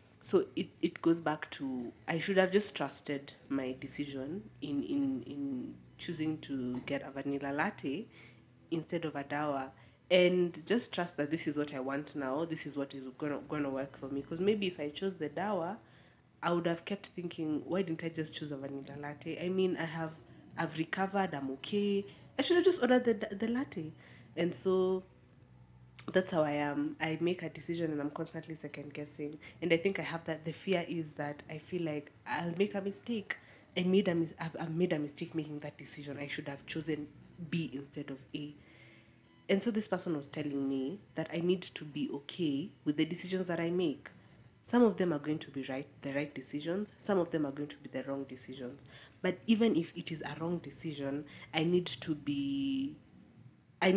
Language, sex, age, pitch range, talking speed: English, female, 20-39, 145-180 Hz, 205 wpm